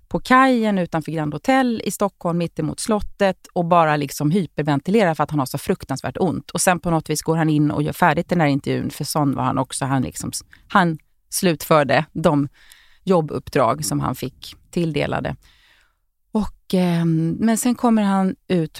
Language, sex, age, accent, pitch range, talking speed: Swedish, female, 30-49, native, 150-200 Hz, 175 wpm